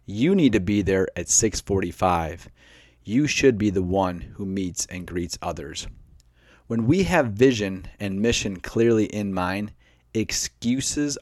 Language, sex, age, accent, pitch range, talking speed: English, male, 30-49, American, 90-120 Hz, 145 wpm